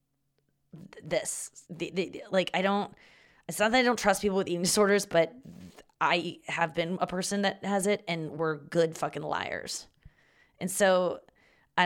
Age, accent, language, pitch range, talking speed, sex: 20-39, American, English, 155-185 Hz, 170 wpm, female